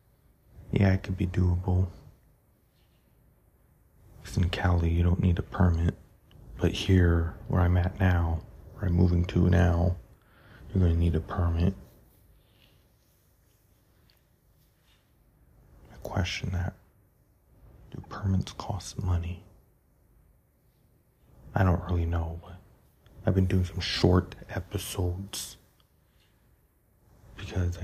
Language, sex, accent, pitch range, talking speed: English, male, American, 90-95 Hz, 105 wpm